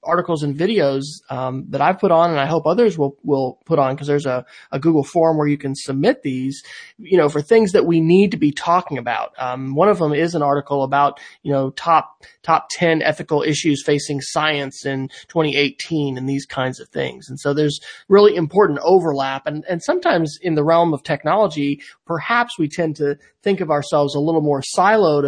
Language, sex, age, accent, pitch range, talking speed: English, male, 30-49, American, 140-175 Hz, 205 wpm